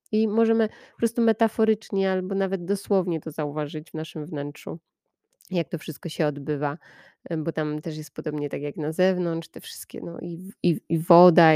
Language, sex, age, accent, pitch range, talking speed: Polish, female, 20-39, native, 160-200 Hz, 175 wpm